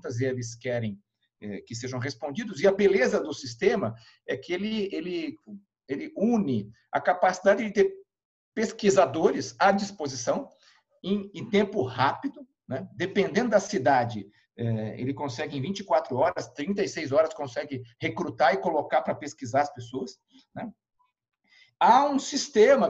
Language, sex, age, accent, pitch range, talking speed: Portuguese, male, 50-69, Brazilian, 135-210 Hz, 135 wpm